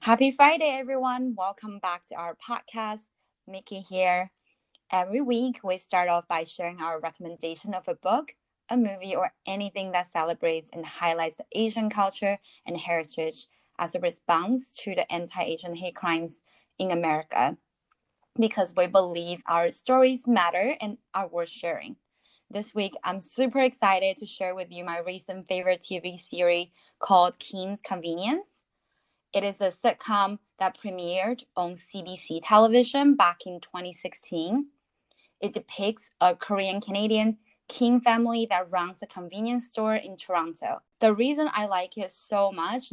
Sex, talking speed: female, 145 wpm